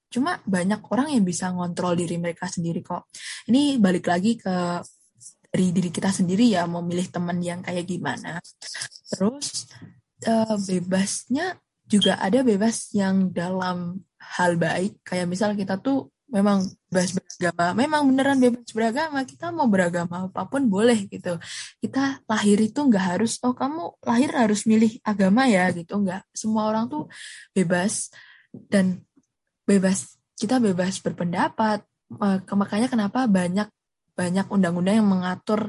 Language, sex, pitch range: Indonesian, female, 180-235 Hz